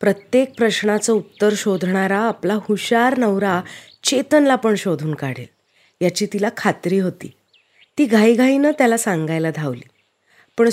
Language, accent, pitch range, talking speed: Marathi, native, 175-255 Hz, 115 wpm